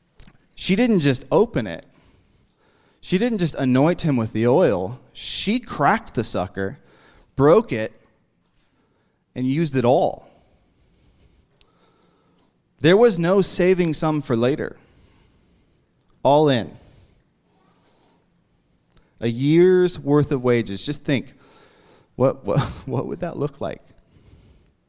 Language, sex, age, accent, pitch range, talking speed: English, male, 30-49, American, 120-165 Hz, 110 wpm